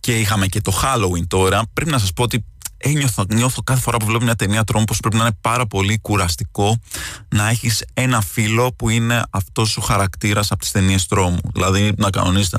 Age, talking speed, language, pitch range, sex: 20-39, 205 wpm, Greek, 100-135 Hz, male